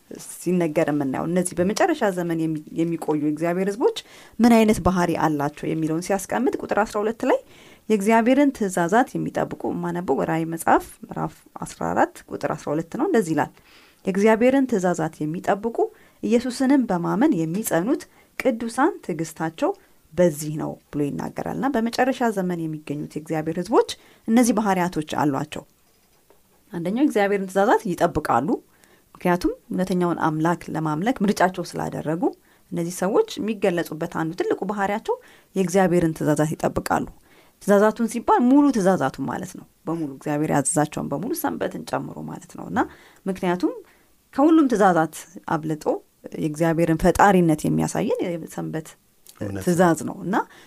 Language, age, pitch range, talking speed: Amharic, 30-49, 160-230 Hz, 105 wpm